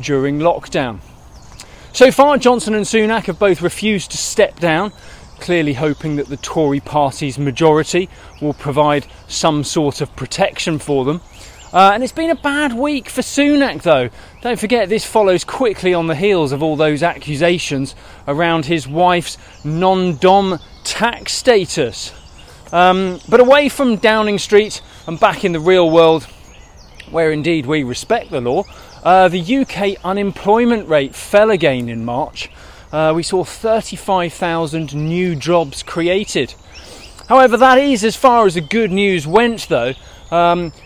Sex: male